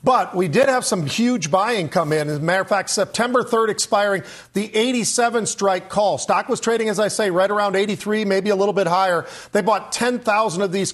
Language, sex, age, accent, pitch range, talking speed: English, male, 40-59, American, 190-225 Hz, 220 wpm